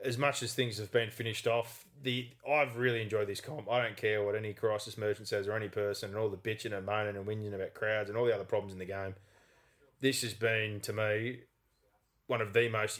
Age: 20-39